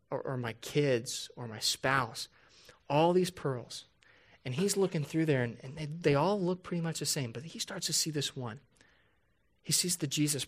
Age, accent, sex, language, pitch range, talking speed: 30-49, American, male, English, 125-155 Hz, 205 wpm